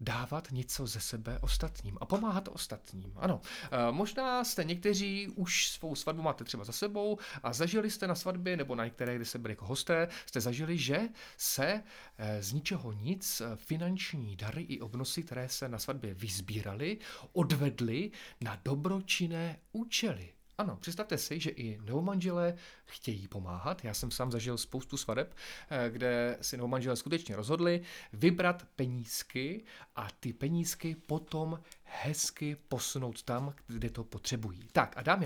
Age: 40-59